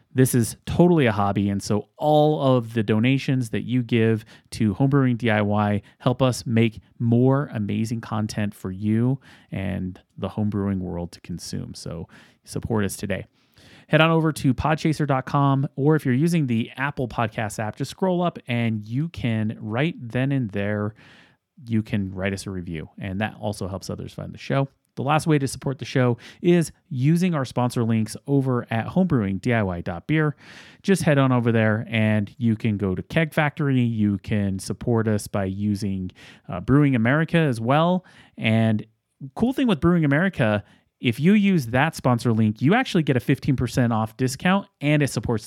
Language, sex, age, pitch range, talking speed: English, male, 30-49, 105-140 Hz, 175 wpm